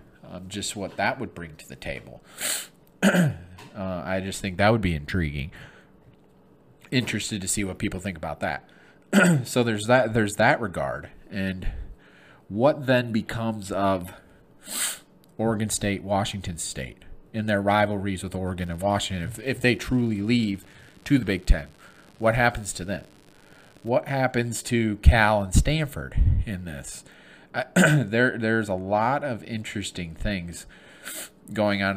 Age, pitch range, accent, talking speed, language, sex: 30-49, 90-110 Hz, American, 145 wpm, English, male